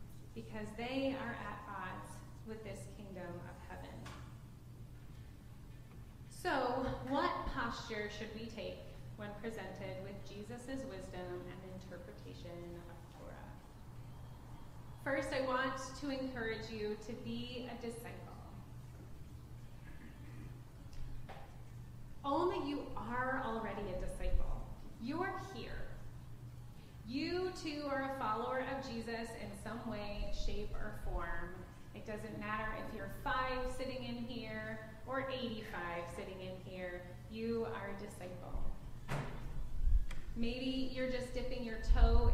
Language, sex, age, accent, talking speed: English, female, 20-39, American, 115 wpm